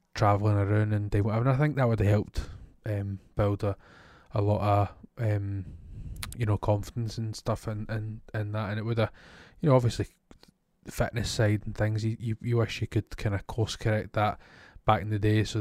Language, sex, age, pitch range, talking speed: English, male, 20-39, 100-110 Hz, 215 wpm